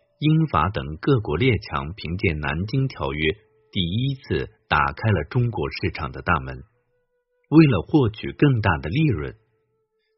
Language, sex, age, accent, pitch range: Chinese, male, 50-69, native, 80-135 Hz